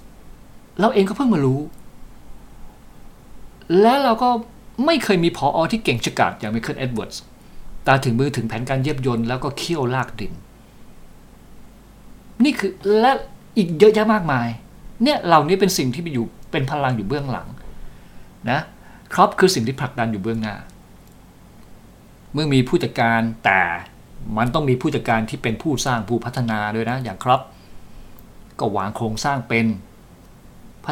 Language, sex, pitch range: Thai, male, 110-140 Hz